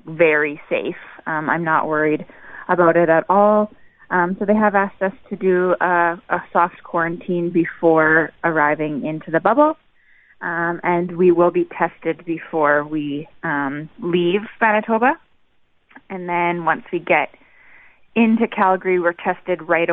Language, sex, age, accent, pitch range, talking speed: English, female, 20-39, American, 160-185 Hz, 145 wpm